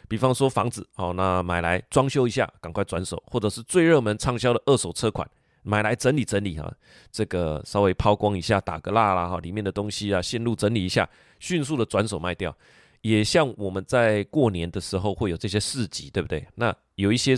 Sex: male